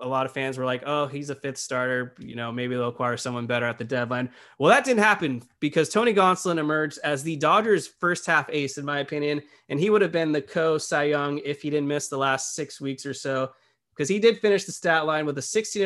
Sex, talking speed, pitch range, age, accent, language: male, 250 wpm, 140-170 Hz, 20-39, American, English